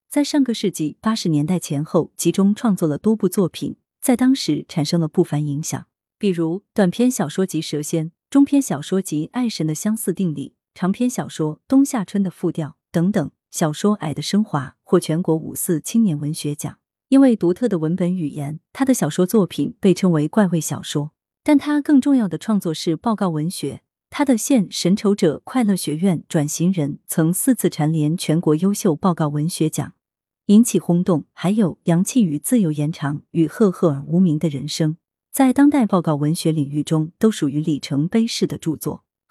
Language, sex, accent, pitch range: Chinese, female, native, 155-215 Hz